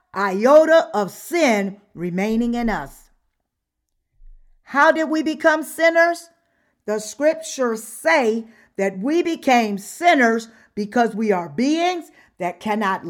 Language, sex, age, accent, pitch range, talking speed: English, female, 50-69, American, 205-290 Hz, 110 wpm